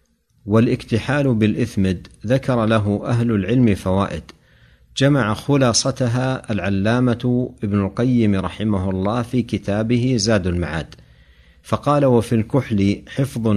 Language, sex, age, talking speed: Arabic, male, 50-69, 95 wpm